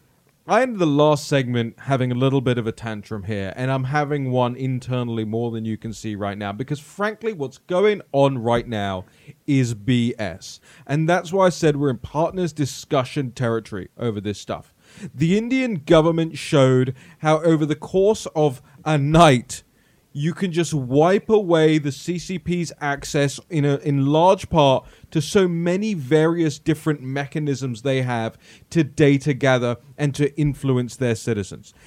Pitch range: 135-175 Hz